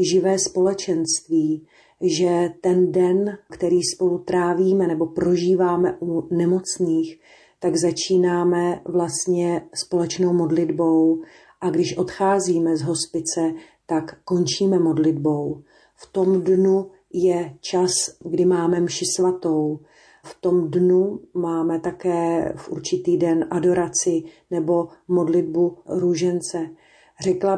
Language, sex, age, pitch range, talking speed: Slovak, female, 40-59, 165-185 Hz, 100 wpm